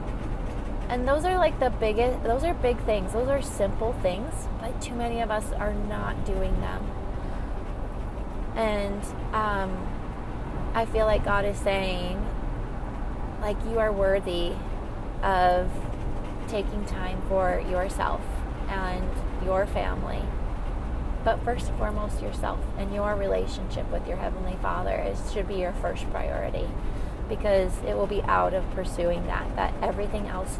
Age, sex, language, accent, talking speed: 20-39, female, English, American, 140 wpm